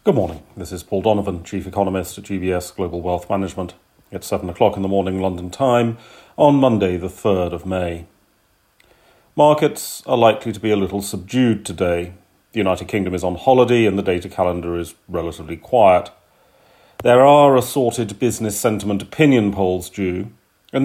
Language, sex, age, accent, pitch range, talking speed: English, male, 40-59, British, 95-120 Hz, 165 wpm